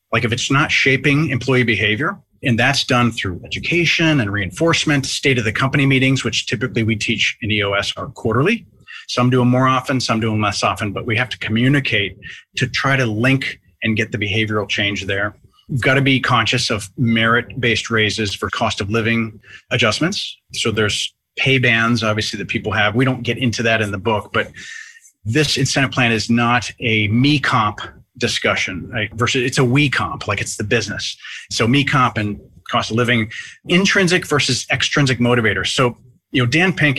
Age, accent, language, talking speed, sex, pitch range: 30-49, American, English, 190 wpm, male, 110-135 Hz